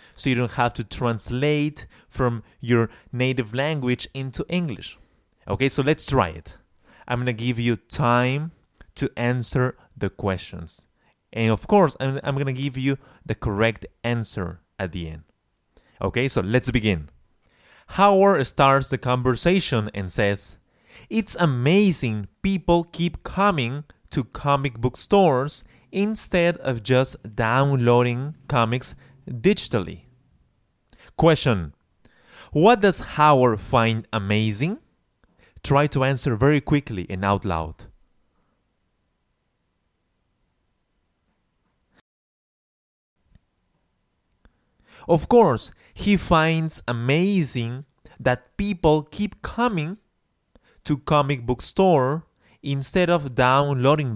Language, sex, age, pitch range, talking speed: English, male, 20-39, 110-150 Hz, 105 wpm